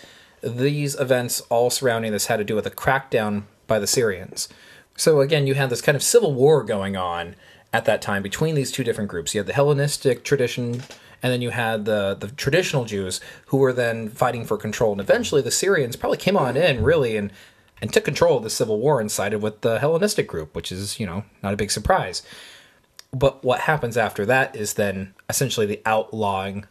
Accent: American